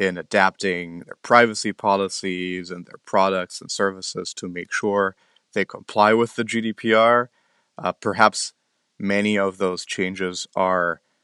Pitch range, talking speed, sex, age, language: 90-105 Hz, 135 wpm, male, 30-49, English